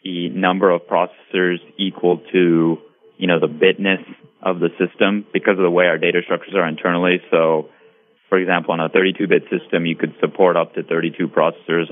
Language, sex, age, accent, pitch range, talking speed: English, male, 30-49, American, 85-100 Hz, 185 wpm